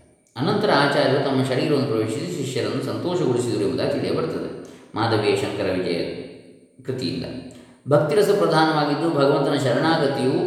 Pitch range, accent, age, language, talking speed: 115-140 Hz, native, 20-39, Kannada, 90 wpm